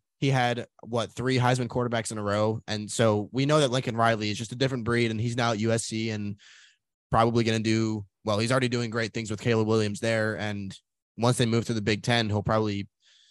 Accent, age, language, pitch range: American, 20-39, English, 110-145 Hz